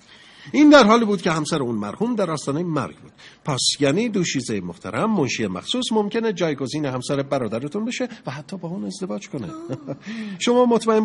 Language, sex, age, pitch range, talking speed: Persian, male, 50-69, 135-205 Hz, 170 wpm